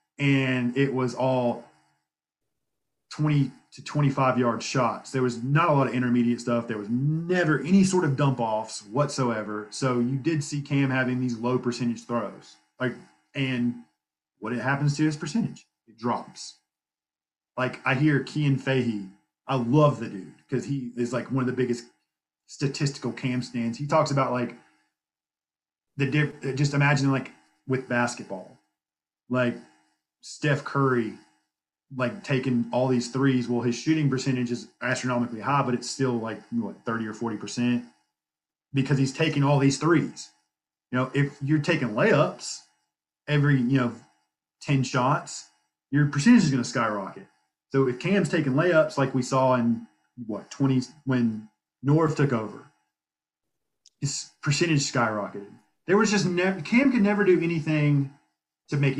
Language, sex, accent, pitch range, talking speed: English, male, American, 100-140 Hz, 155 wpm